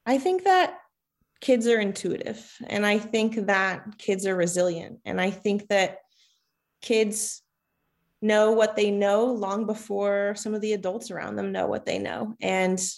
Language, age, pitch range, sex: English, 20-39, 195-220 Hz, female